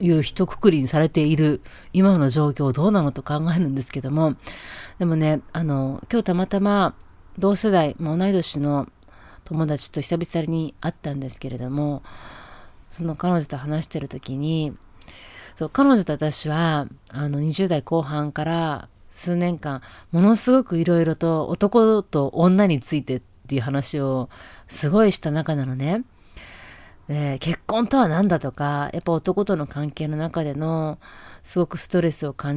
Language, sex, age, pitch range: Japanese, female, 30-49, 140-180 Hz